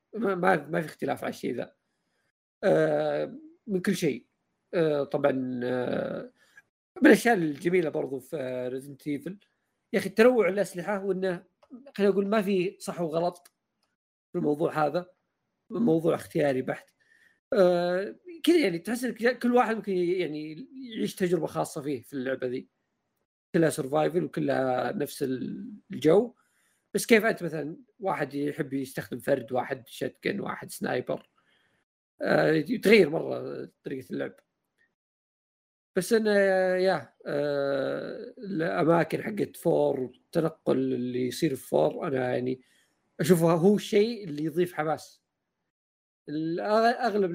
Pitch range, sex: 145-205 Hz, male